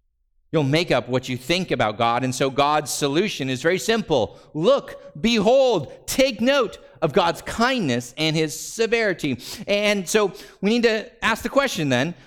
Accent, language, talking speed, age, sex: American, English, 165 wpm, 50-69, male